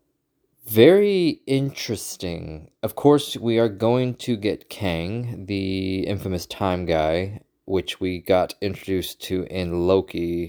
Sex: male